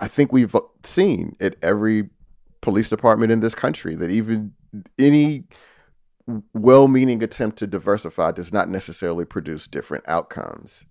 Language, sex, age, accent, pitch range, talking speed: English, male, 30-49, American, 85-115 Hz, 130 wpm